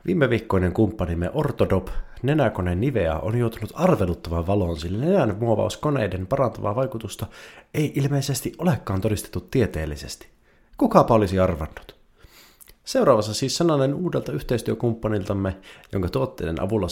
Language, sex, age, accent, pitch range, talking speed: Finnish, male, 30-49, native, 85-125 Hz, 110 wpm